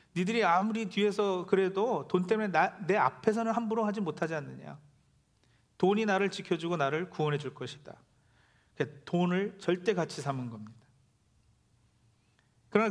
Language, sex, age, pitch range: Korean, male, 40-59, 135-205 Hz